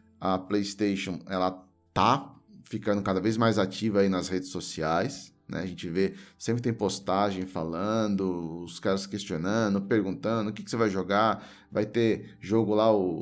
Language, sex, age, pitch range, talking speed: Portuguese, male, 20-39, 95-110 Hz, 165 wpm